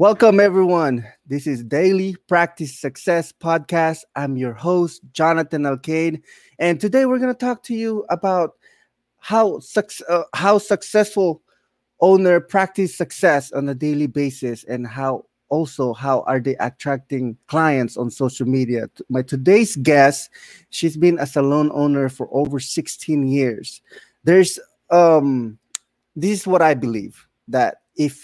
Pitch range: 130-170 Hz